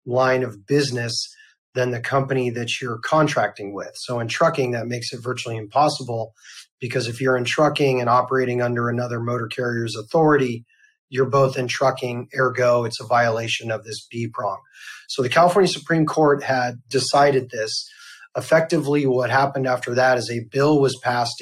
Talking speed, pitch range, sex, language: 165 wpm, 120-135 Hz, male, English